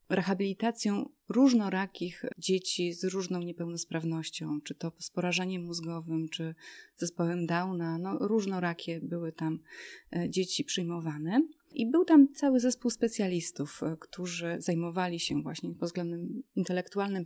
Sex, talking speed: female, 120 wpm